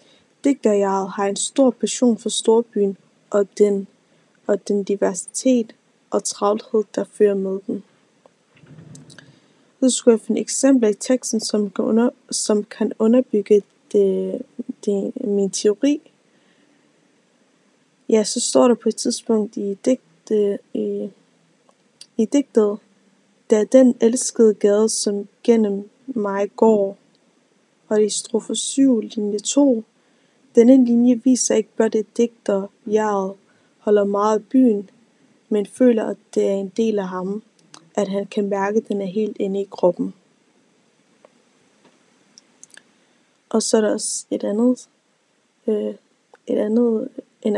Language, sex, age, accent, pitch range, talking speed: Danish, female, 20-39, native, 205-245 Hz, 130 wpm